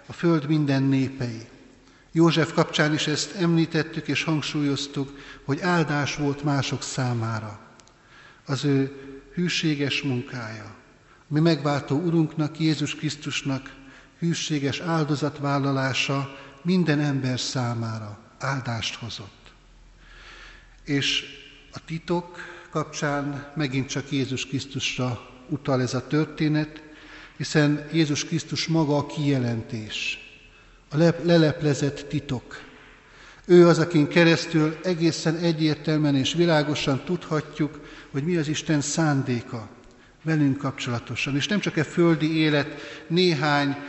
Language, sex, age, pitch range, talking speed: Hungarian, male, 60-79, 135-155 Hz, 105 wpm